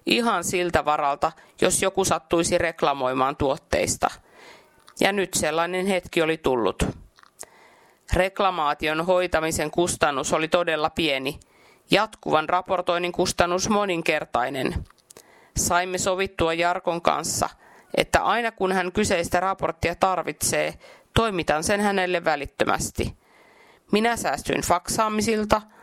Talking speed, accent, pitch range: 100 wpm, native, 165-210 Hz